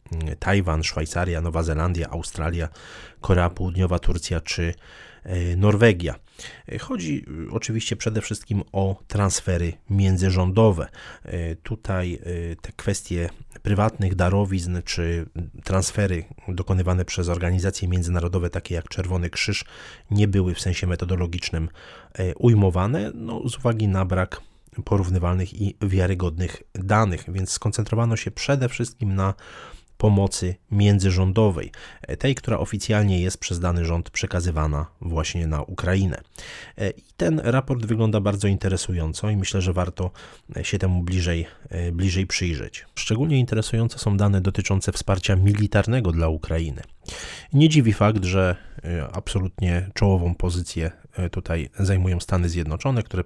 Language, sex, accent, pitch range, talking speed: Polish, male, native, 85-105 Hz, 115 wpm